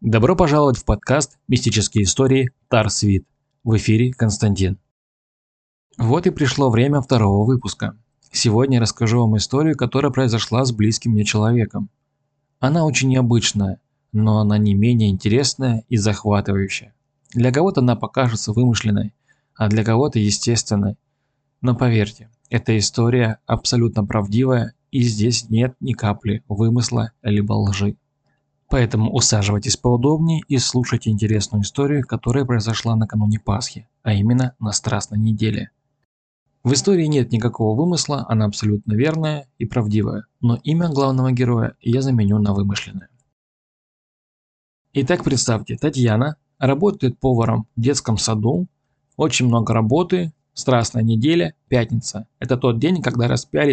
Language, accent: Russian, native